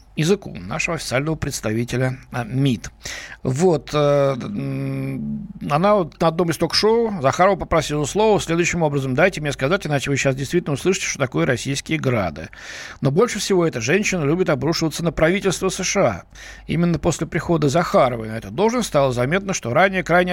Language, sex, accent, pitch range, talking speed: Russian, male, native, 135-185 Hz, 155 wpm